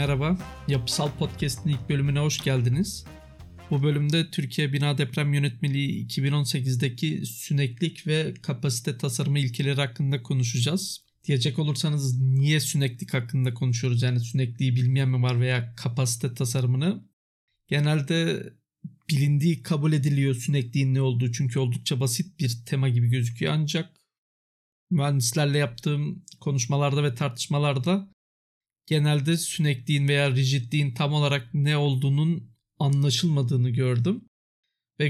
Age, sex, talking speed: 50-69, male, 115 wpm